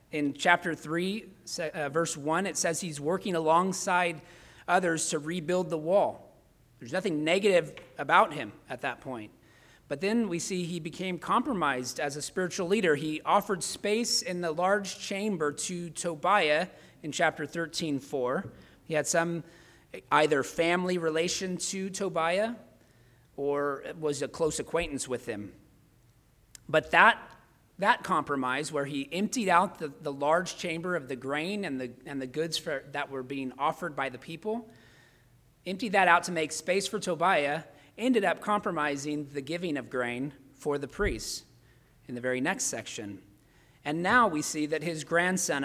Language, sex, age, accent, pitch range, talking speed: English, male, 40-59, American, 140-180 Hz, 155 wpm